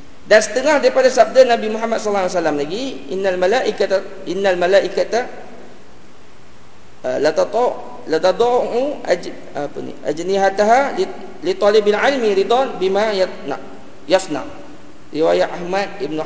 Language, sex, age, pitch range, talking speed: English, male, 40-59, 145-200 Hz, 115 wpm